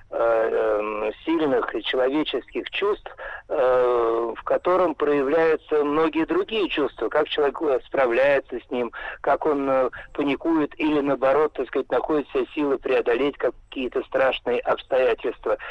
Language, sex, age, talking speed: Russian, male, 50-69, 105 wpm